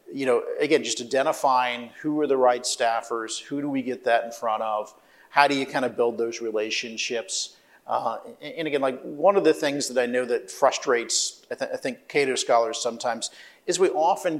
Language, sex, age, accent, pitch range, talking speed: English, male, 40-59, American, 120-165 Hz, 200 wpm